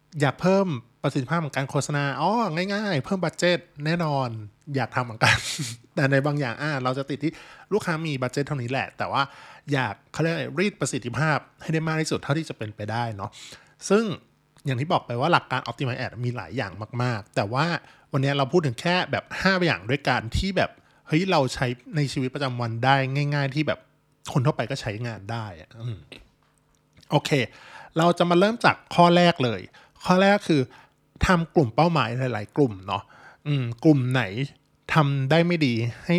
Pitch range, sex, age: 125-160 Hz, male, 20-39